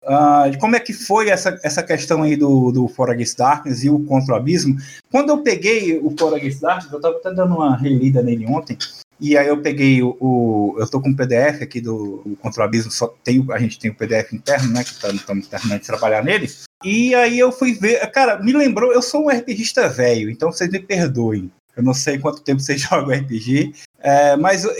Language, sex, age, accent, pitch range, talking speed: Portuguese, male, 20-39, Brazilian, 135-205 Hz, 225 wpm